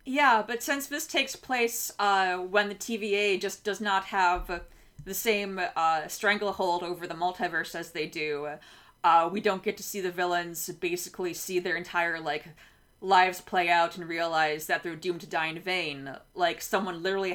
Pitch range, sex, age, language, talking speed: 170-200 Hz, female, 20-39, English, 180 wpm